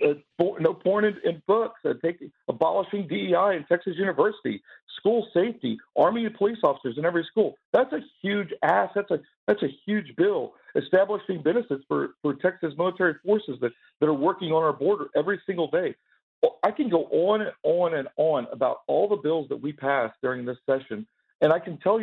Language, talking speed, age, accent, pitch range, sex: English, 200 wpm, 50-69, American, 145-205 Hz, male